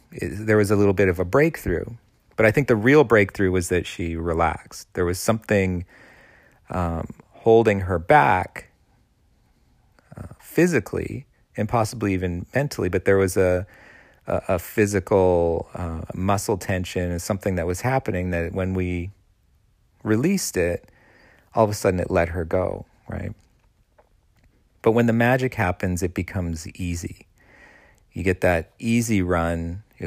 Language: English